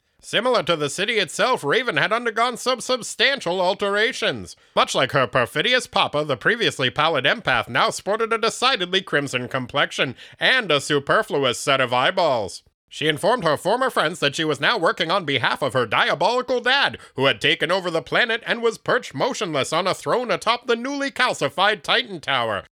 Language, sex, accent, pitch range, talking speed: English, male, American, 160-250 Hz, 175 wpm